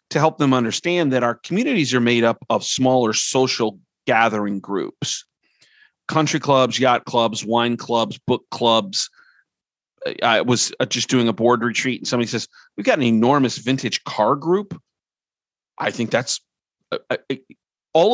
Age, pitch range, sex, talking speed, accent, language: 40-59, 120-145 Hz, male, 145 wpm, American, English